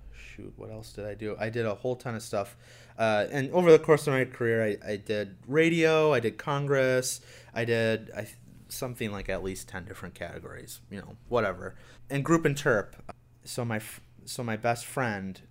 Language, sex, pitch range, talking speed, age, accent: English, male, 105-120 Hz, 195 wpm, 30-49, American